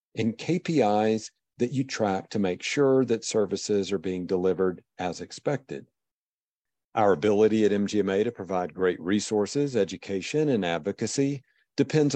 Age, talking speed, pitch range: 50-69, 135 wpm, 95-125 Hz